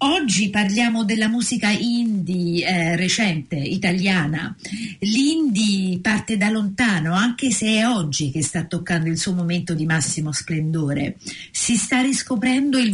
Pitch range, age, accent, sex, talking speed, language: 175-215 Hz, 50-69, native, female, 135 wpm, Italian